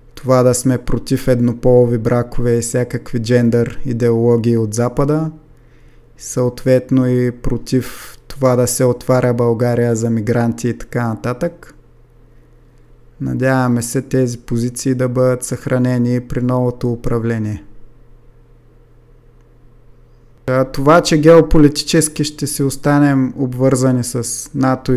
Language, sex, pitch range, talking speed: Bulgarian, male, 120-135 Hz, 110 wpm